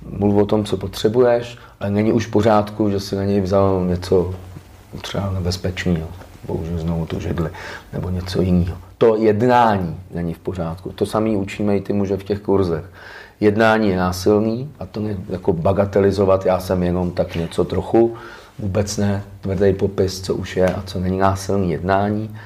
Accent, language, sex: native, Czech, male